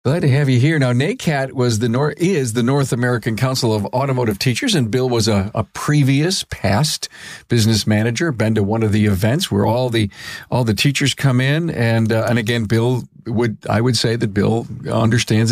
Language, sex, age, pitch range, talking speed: English, male, 50-69, 110-135 Hz, 205 wpm